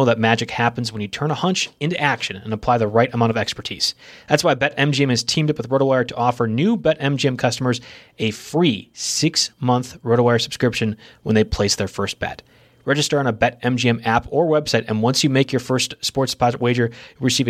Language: English